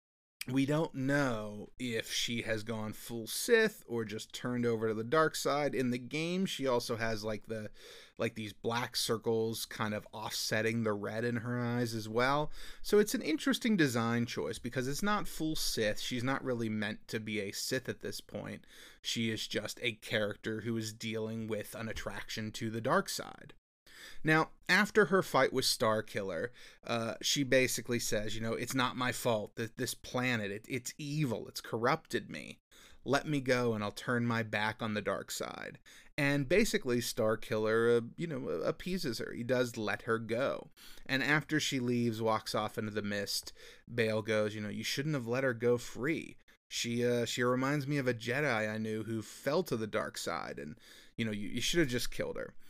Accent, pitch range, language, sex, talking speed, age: American, 110-135 Hz, English, male, 195 wpm, 30-49